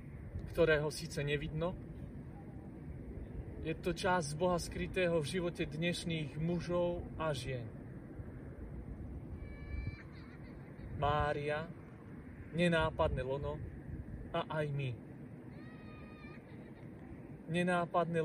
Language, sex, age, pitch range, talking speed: Slovak, male, 30-49, 135-170 Hz, 70 wpm